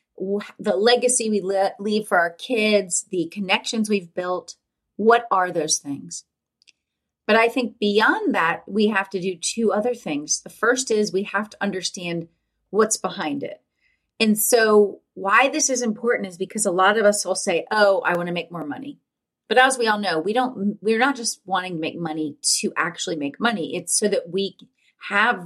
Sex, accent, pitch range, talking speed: female, American, 175-220 Hz, 185 wpm